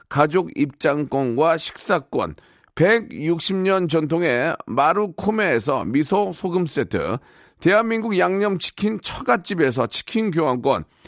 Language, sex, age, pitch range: Korean, male, 40-59, 165-220 Hz